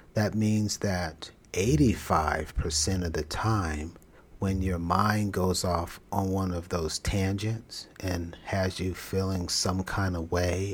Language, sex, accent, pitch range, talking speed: English, male, American, 85-100 Hz, 140 wpm